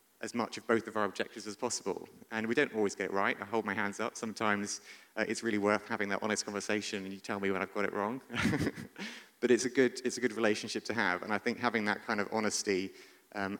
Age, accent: 30-49, British